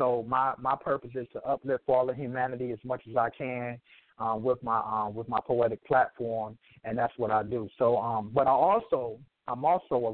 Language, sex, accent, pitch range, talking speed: English, male, American, 120-150 Hz, 215 wpm